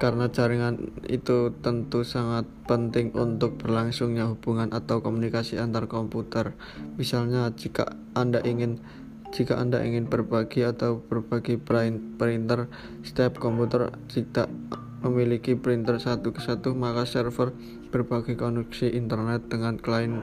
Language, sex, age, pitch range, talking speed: Indonesian, male, 20-39, 115-125 Hz, 115 wpm